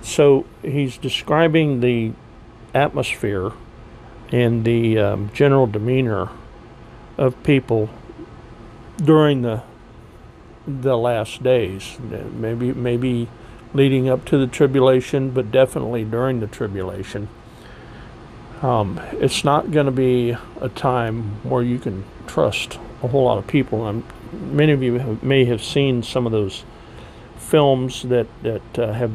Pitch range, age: 115-130 Hz, 50-69